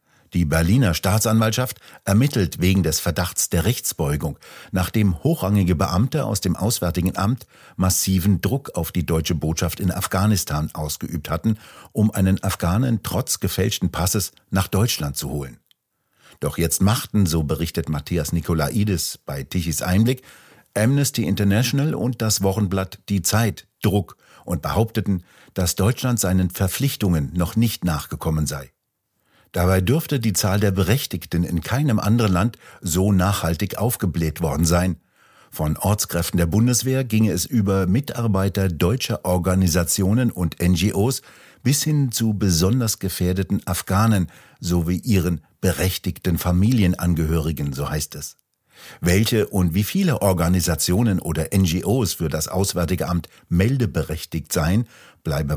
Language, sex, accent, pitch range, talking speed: German, male, German, 85-110 Hz, 125 wpm